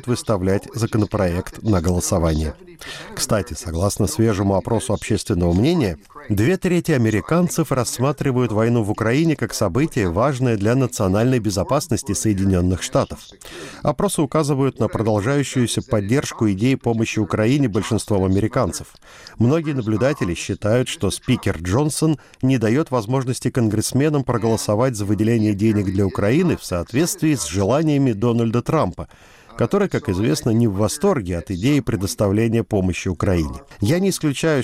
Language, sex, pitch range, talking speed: Russian, male, 100-130 Hz, 125 wpm